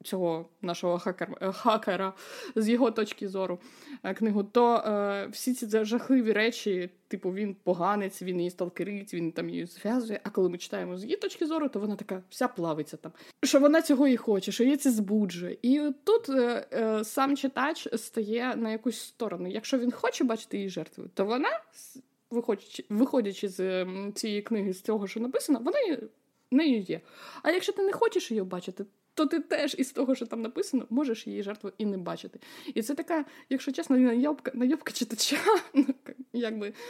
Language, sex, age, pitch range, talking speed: Ukrainian, female, 20-39, 200-280 Hz, 175 wpm